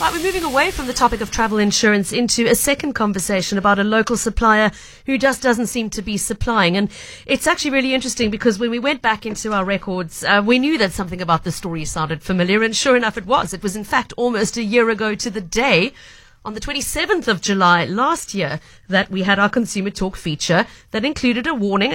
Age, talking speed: 40-59, 220 wpm